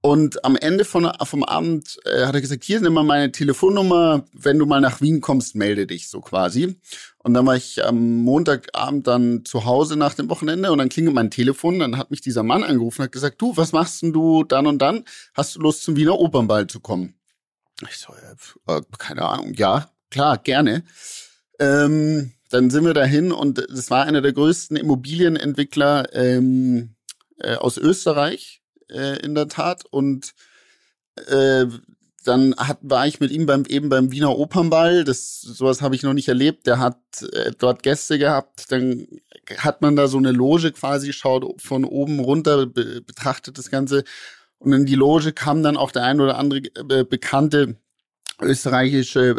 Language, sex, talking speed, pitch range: German, male, 180 wpm, 130-150 Hz